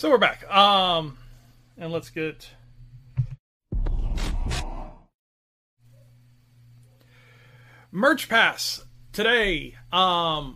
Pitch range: 135-195 Hz